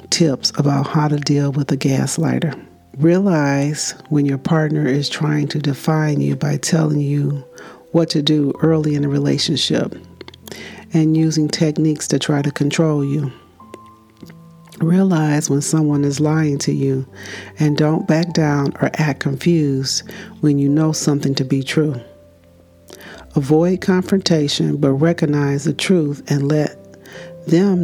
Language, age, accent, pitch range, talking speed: English, 40-59, American, 140-160 Hz, 140 wpm